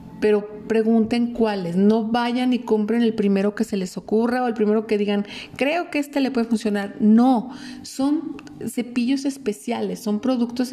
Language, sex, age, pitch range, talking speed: Spanish, female, 40-59, 215-260 Hz, 170 wpm